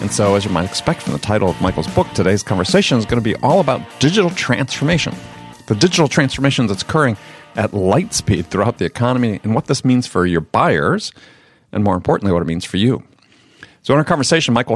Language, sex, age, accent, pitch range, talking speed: English, male, 40-59, American, 105-145 Hz, 215 wpm